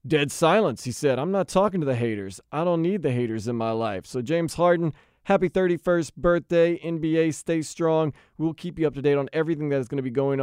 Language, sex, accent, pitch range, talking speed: English, male, American, 130-175 Hz, 235 wpm